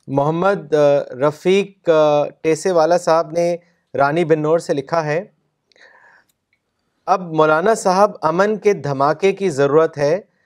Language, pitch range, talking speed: Urdu, 150-190 Hz, 120 wpm